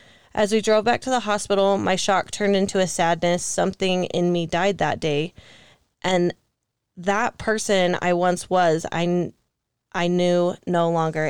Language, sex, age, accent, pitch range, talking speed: English, female, 20-39, American, 175-195 Hz, 160 wpm